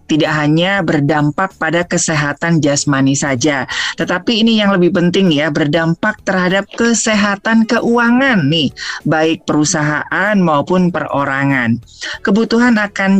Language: Indonesian